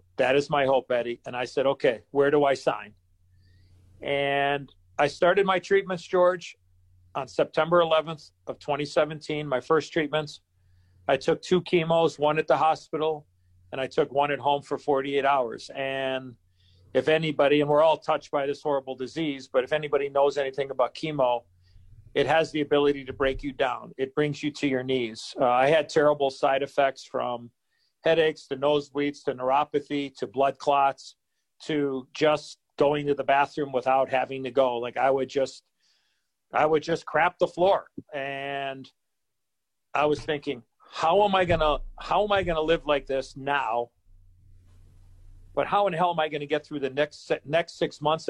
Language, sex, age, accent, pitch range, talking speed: English, male, 40-59, American, 125-150 Hz, 180 wpm